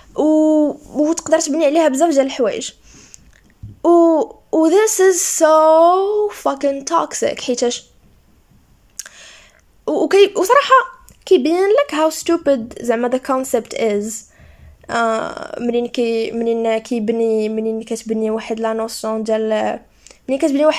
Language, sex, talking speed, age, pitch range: English, female, 55 wpm, 10-29, 235-315 Hz